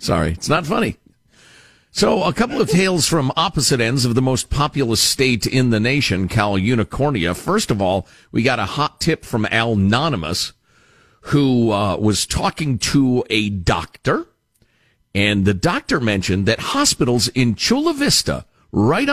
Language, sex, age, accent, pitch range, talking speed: English, male, 50-69, American, 105-145 Hz, 155 wpm